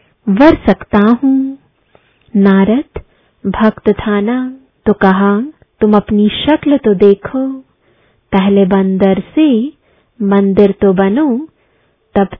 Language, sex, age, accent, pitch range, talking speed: English, female, 20-39, Indian, 200-260 Hz, 95 wpm